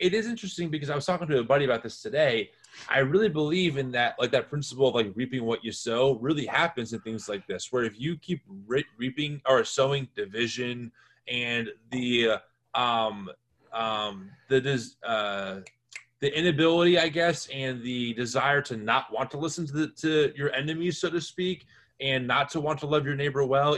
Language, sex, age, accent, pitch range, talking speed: English, male, 20-39, American, 120-155 Hz, 190 wpm